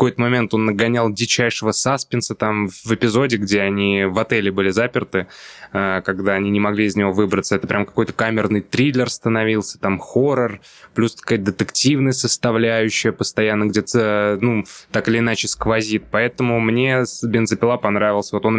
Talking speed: 150 wpm